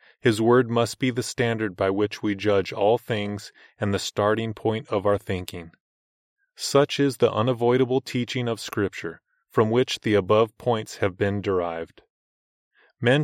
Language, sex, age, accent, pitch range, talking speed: English, male, 30-49, American, 100-120 Hz, 160 wpm